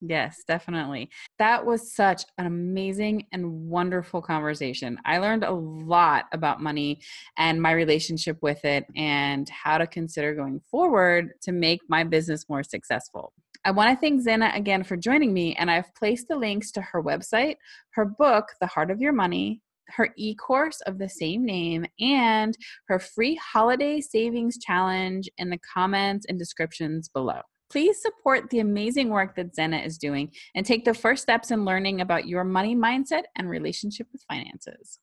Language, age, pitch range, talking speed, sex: English, 20-39, 165-230 Hz, 170 wpm, female